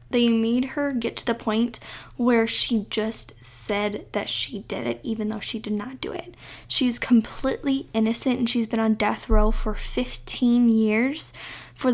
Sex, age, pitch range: female, 10-29, 210-235 Hz